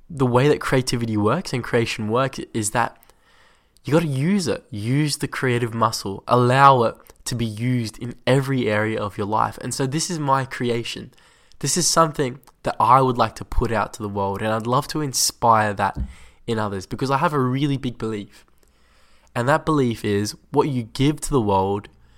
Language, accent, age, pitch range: English, Australian, 20-39, 105-135 Hz